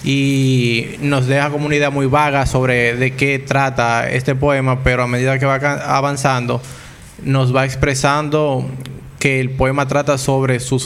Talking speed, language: 160 wpm, Spanish